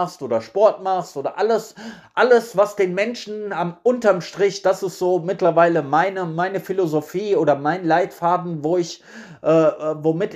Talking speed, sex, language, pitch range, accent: 150 wpm, male, German, 160-205 Hz, German